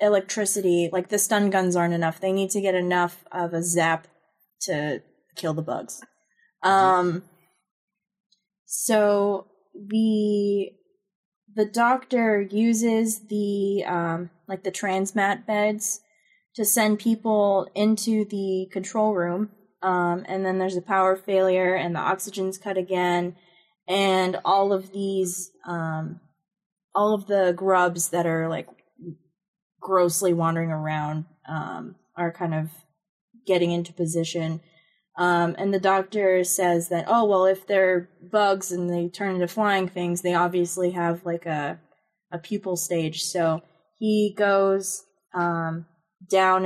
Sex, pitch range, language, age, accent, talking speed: female, 170-200 Hz, English, 20-39, American, 130 wpm